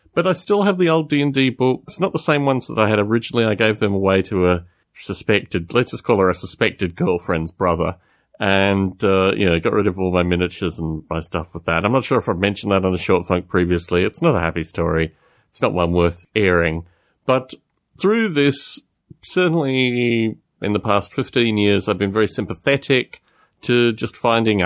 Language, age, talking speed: English, 30-49, 205 wpm